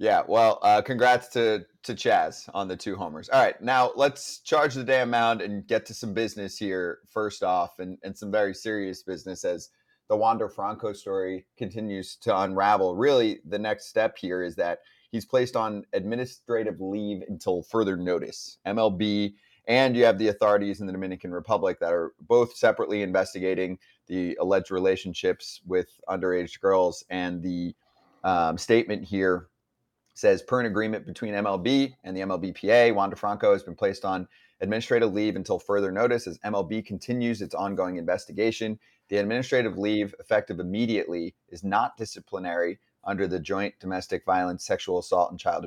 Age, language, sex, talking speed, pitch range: 30-49, English, male, 165 wpm, 95-115 Hz